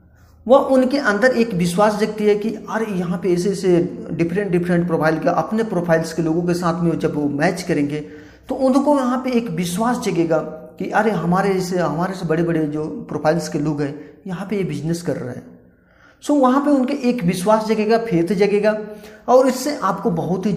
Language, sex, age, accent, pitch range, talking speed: Hindi, male, 40-59, native, 160-230 Hz, 200 wpm